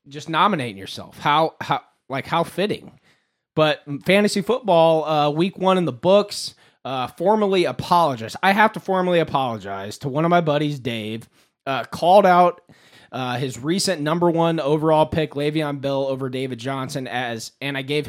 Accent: American